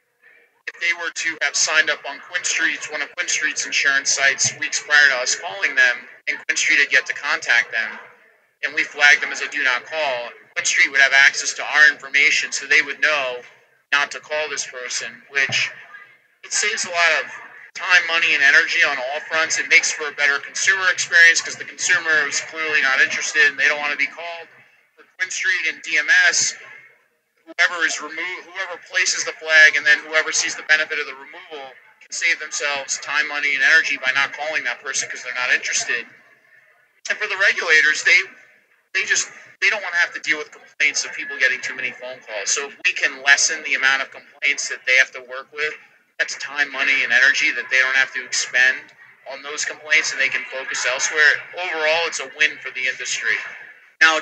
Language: English